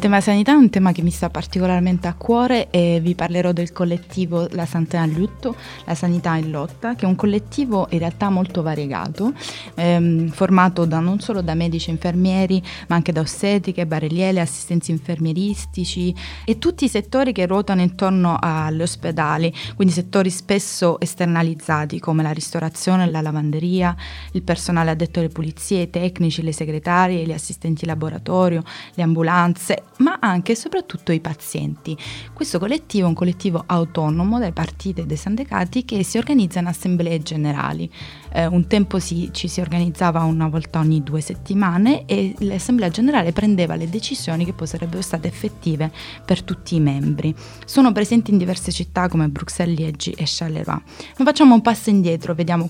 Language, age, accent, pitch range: Italian, 20-39, native, 165-195 Hz